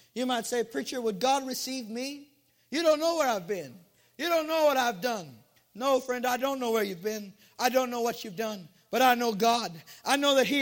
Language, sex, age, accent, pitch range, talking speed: English, male, 50-69, American, 240-295 Hz, 235 wpm